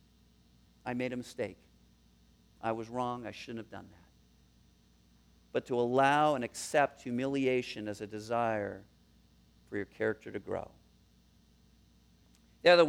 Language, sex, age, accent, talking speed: English, male, 50-69, American, 130 wpm